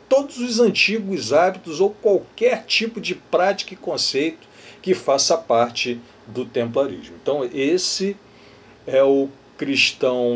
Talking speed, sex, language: 120 wpm, male, Portuguese